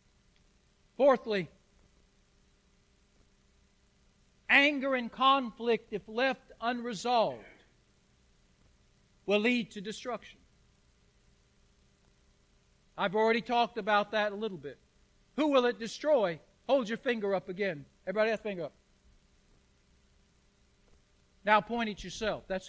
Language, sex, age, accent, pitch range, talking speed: English, male, 60-79, American, 190-260 Hz, 100 wpm